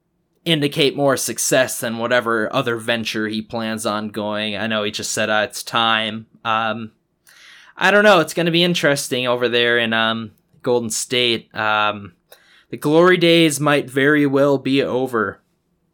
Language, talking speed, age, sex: English, 160 wpm, 20-39, male